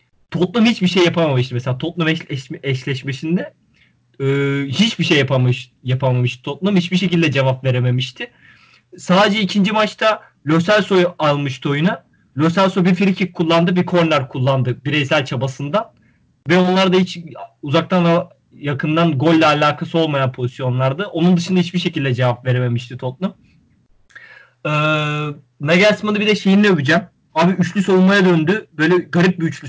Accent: native